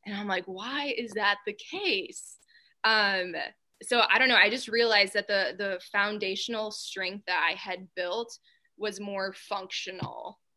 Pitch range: 185-215 Hz